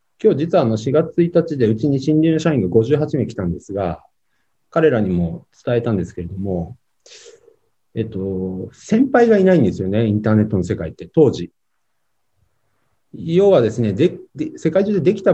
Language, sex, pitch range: Japanese, male, 110-175 Hz